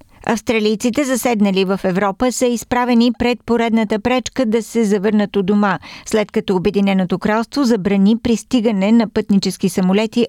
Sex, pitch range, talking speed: female, 175-225 Hz, 135 wpm